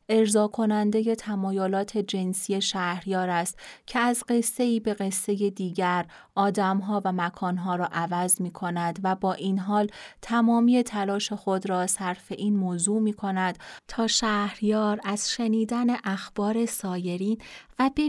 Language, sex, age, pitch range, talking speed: Persian, female, 30-49, 180-225 Hz, 145 wpm